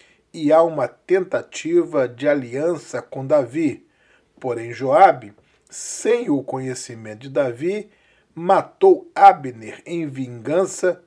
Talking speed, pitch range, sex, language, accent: 105 wpm, 130-185 Hz, male, English, Brazilian